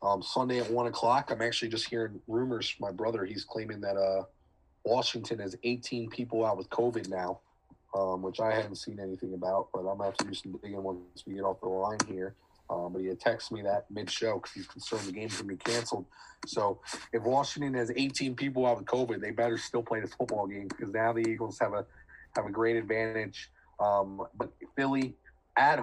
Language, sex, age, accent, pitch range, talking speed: English, male, 30-49, American, 100-125 Hz, 225 wpm